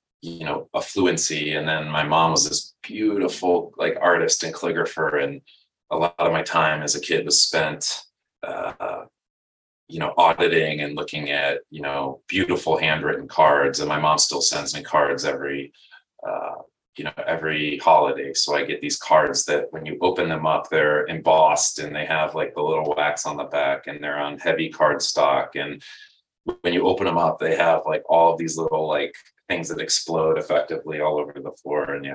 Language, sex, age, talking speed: English, male, 30-49, 190 wpm